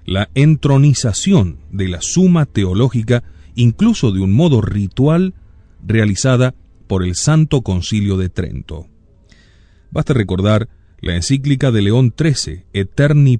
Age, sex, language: 40-59, male, Spanish